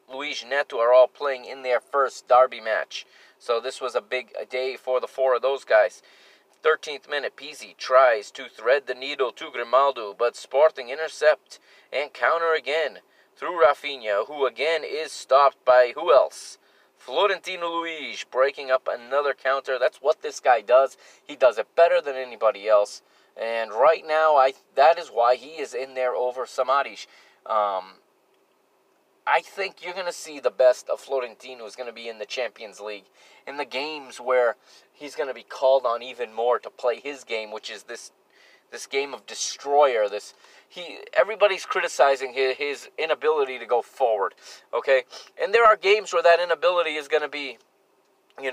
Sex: male